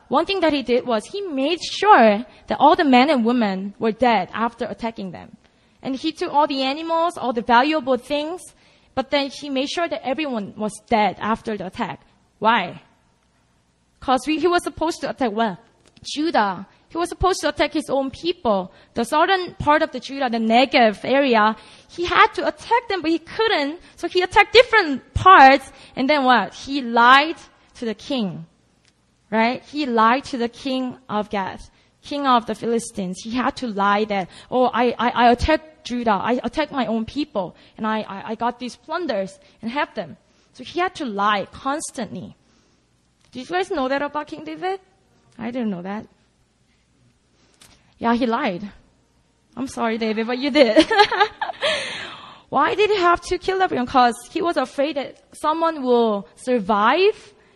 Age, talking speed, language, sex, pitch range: 20-39, 175 wpm, English, female, 225-310 Hz